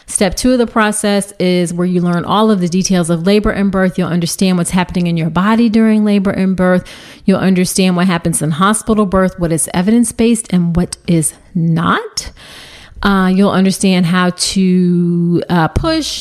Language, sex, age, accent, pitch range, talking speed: English, female, 30-49, American, 175-220 Hz, 185 wpm